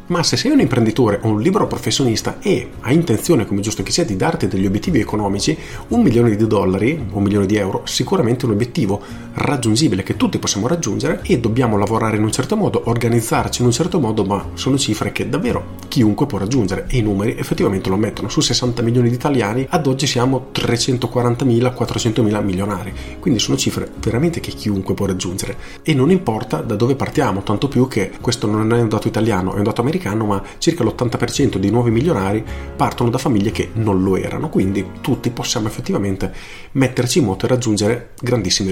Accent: native